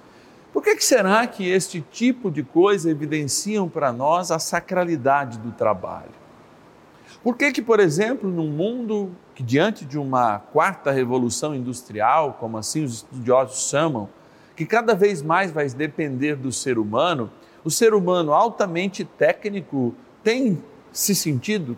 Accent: Brazilian